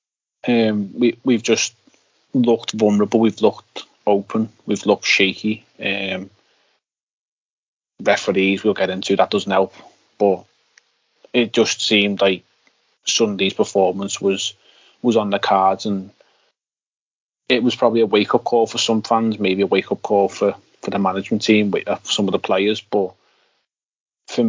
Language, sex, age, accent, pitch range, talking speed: English, male, 30-49, British, 95-115 Hz, 140 wpm